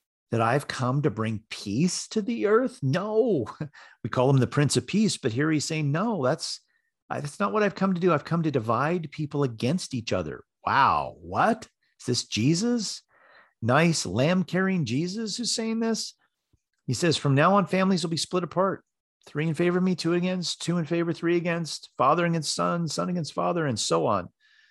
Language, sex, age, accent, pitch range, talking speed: English, male, 40-59, American, 105-170 Hz, 195 wpm